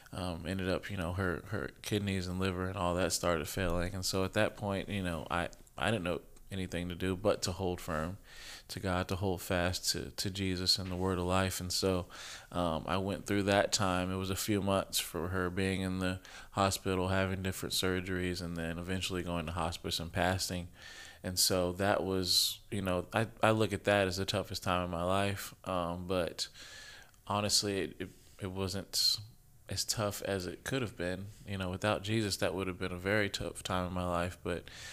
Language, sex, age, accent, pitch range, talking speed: English, male, 20-39, American, 90-100 Hz, 215 wpm